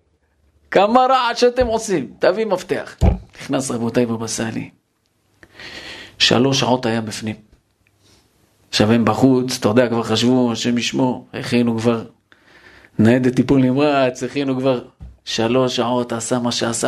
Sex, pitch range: male, 120-150 Hz